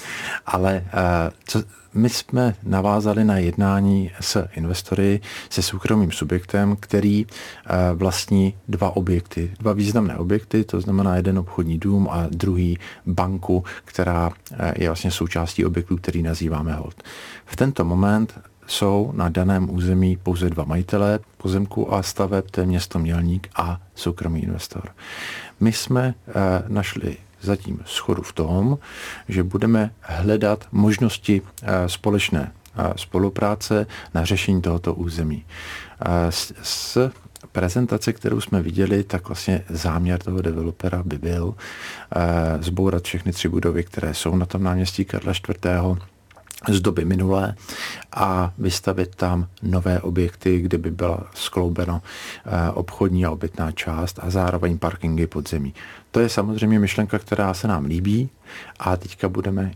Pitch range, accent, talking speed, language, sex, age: 90-100 Hz, native, 125 wpm, Czech, male, 50-69